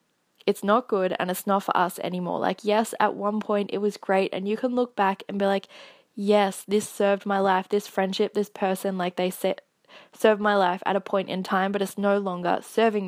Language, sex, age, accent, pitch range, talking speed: English, female, 10-29, Australian, 185-215 Hz, 230 wpm